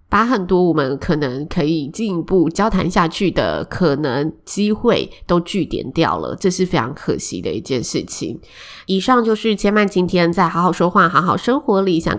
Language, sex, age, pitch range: Chinese, female, 20-39, 155-200 Hz